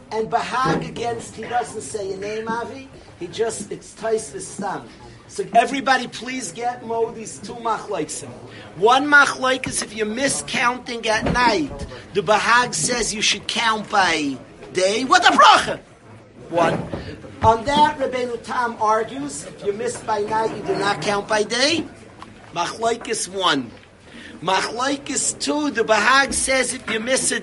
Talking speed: 155 wpm